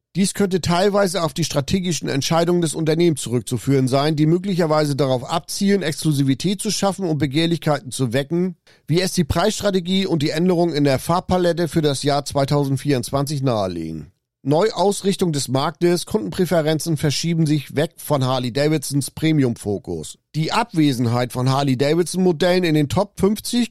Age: 40-59